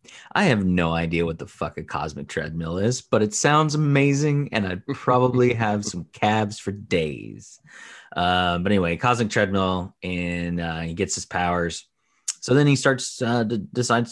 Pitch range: 85-110 Hz